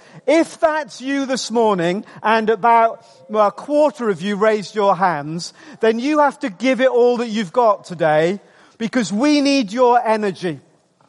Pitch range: 195-260 Hz